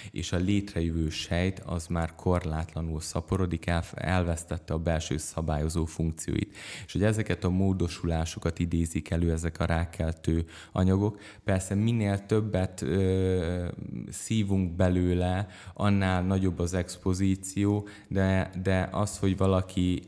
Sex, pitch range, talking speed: male, 85-95 Hz, 115 wpm